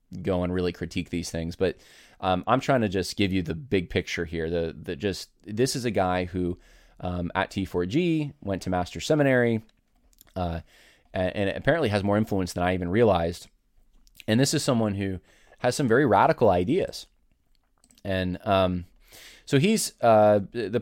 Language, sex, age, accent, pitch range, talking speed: English, male, 20-39, American, 90-110 Hz, 175 wpm